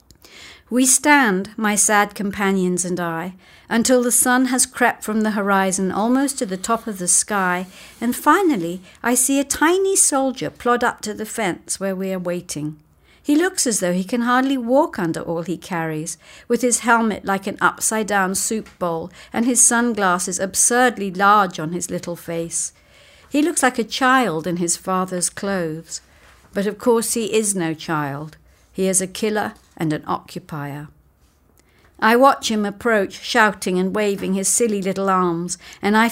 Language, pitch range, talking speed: English, 170-235 Hz, 170 wpm